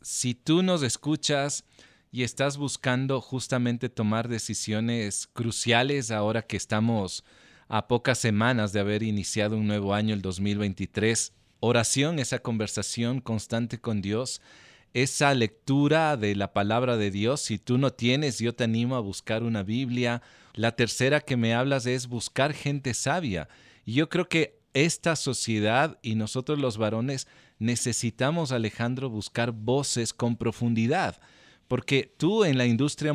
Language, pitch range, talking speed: Spanish, 110-135 Hz, 145 wpm